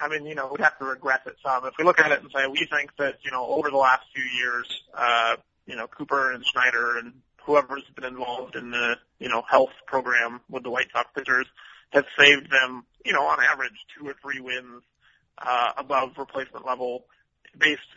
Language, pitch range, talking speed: English, 130-145 Hz, 215 wpm